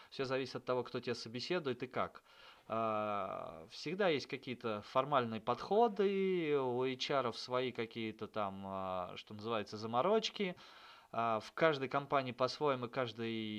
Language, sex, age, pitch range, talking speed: Russian, male, 20-39, 110-135 Hz, 125 wpm